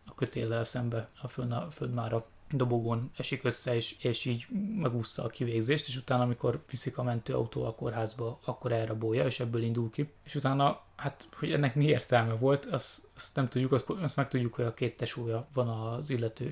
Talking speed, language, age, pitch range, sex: 185 wpm, Hungarian, 20-39, 115-130 Hz, male